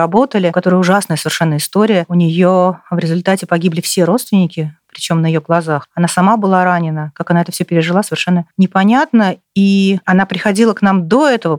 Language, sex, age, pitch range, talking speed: Russian, female, 30-49, 165-210 Hz, 175 wpm